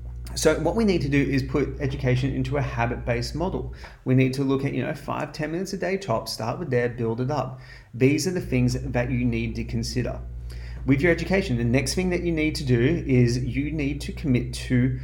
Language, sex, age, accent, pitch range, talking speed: English, male, 30-49, Australian, 125-145 Hz, 230 wpm